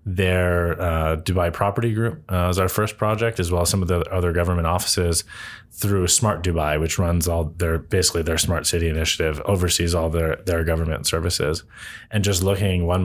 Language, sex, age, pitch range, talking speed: English, male, 30-49, 85-95 Hz, 190 wpm